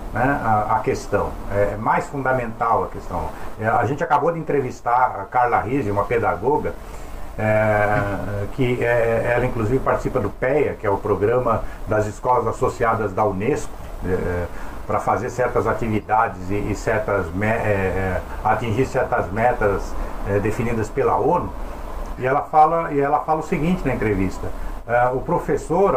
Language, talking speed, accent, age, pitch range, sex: Portuguese, 155 wpm, Brazilian, 60-79, 110-150 Hz, male